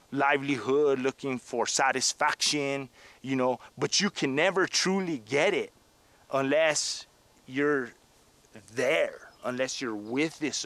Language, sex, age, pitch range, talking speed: English, male, 30-49, 120-155 Hz, 115 wpm